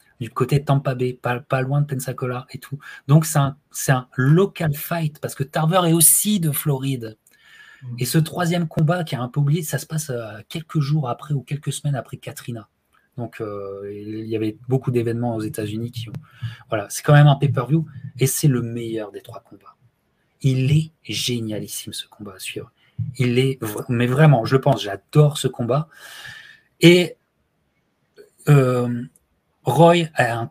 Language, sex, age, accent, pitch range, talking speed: French, male, 20-39, French, 120-155 Hz, 180 wpm